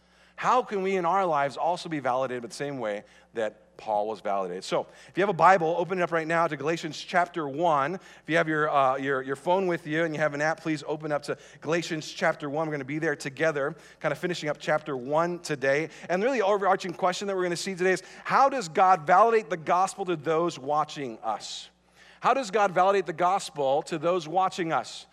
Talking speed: 235 wpm